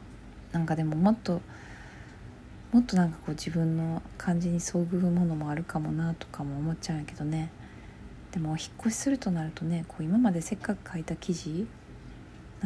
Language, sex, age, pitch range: Japanese, female, 40-59, 155-190 Hz